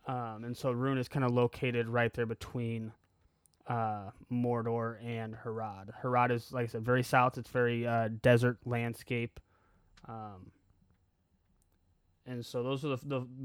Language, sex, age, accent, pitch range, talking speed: English, male, 20-39, American, 110-130 Hz, 150 wpm